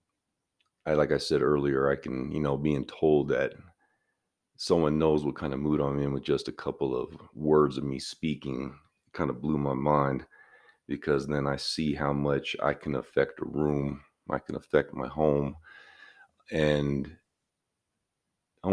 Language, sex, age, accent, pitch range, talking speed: English, male, 40-59, American, 70-75 Hz, 165 wpm